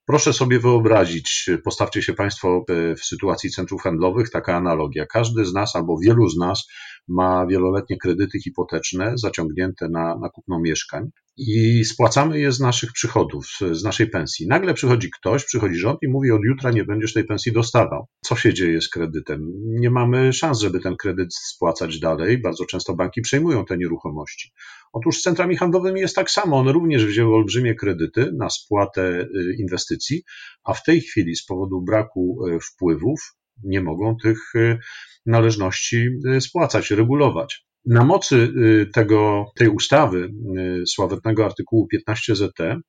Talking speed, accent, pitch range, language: 150 wpm, native, 95-125 Hz, Polish